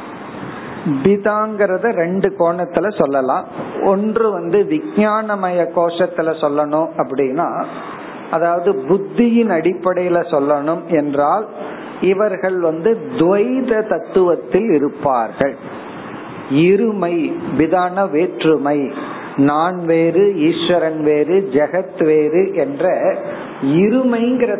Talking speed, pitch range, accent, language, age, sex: 75 wpm, 155-200 Hz, native, Tamil, 50-69, male